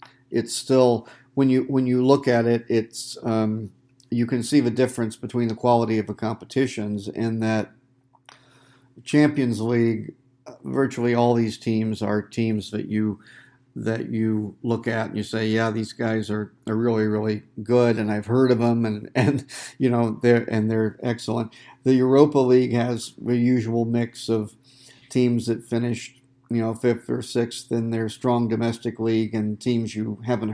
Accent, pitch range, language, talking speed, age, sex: American, 110-125 Hz, English, 170 wpm, 50-69, male